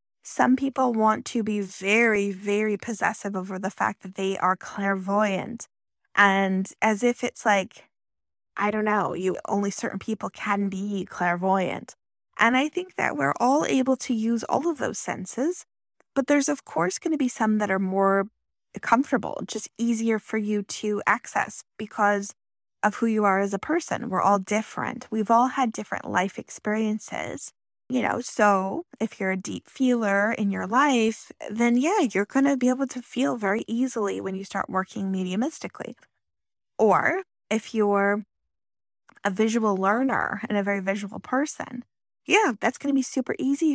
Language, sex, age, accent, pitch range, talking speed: English, female, 20-39, American, 200-250 Hz, 165 wpm